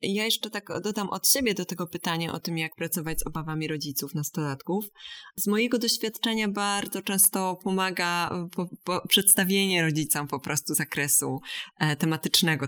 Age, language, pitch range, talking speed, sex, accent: 20-39, Polish, 160-195 Hz, 135 wpm, female, native